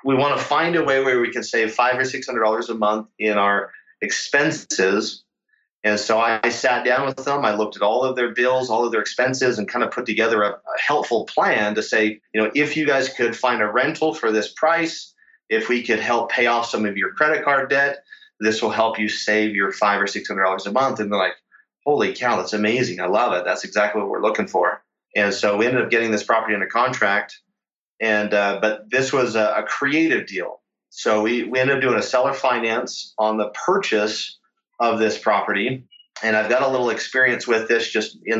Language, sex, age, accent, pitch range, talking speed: English, male, 30-49, American, 105-130 Hz, 225 wpm